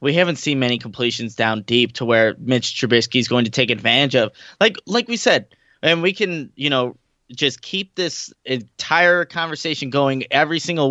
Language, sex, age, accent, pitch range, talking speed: English, male, 20-39, American, 135-175 Hz, 185 wpm